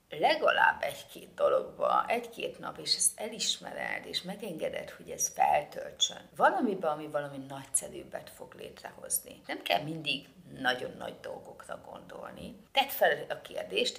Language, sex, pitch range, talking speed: Hungarian, female, 150-210 Hz, 130 wpm